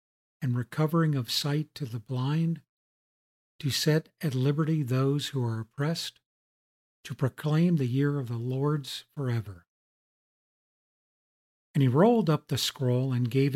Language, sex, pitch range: English, male, 125-150 Hz